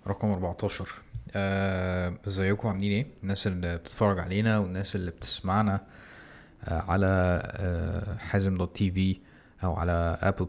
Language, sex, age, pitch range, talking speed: Arabic, male, 20-39, 90-105 Hz, 130 wpm